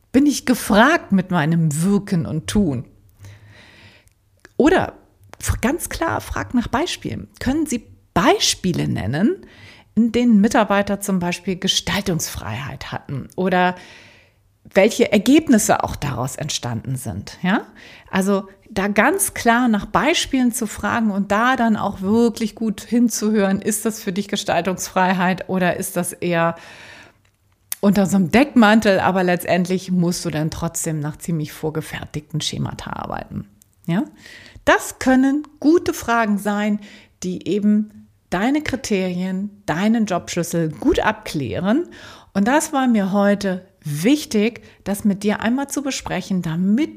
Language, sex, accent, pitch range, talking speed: German, female, German, 160-225 Hz, 125 wpm